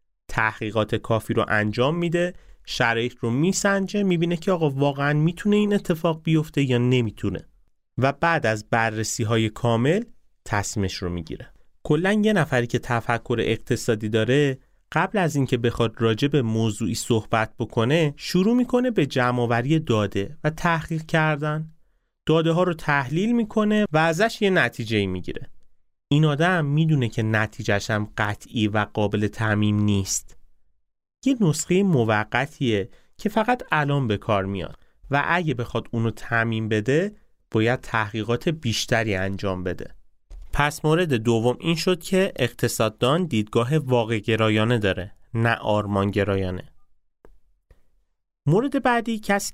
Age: 30-49